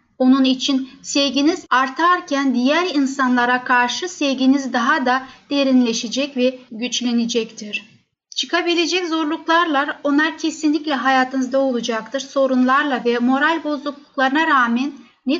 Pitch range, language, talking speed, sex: 255-305 Hz, Turkish, 95 wpm, female